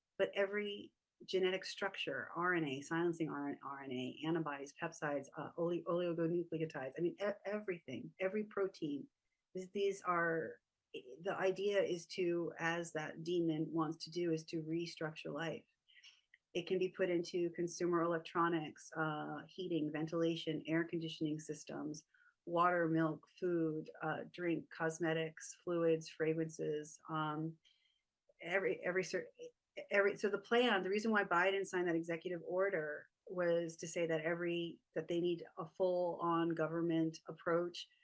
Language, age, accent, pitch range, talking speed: English, 30-49, American, 160-185 Hz, 130 wpm